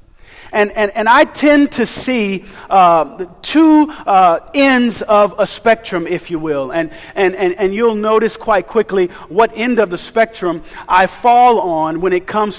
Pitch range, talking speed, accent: 175-250 Hz, 170 wpm, American